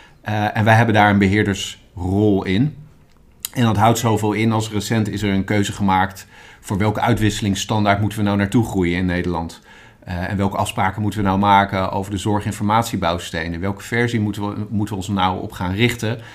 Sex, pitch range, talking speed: male, 95-115 Hz, 185 wpm